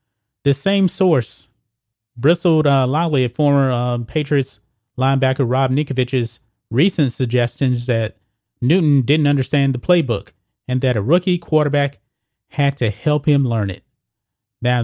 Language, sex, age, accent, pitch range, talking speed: English, male, 30-49, American, 115-150 Hz, 135 wpm